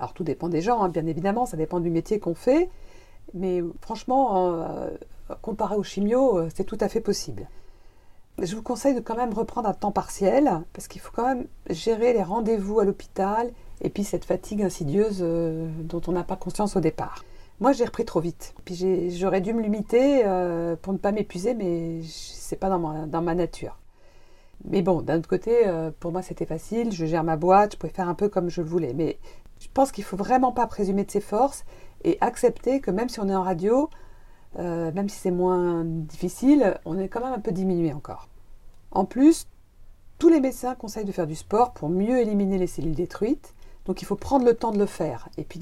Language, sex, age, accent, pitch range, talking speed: French, female, 50-69, French, 170-225 Hz, 225 wpm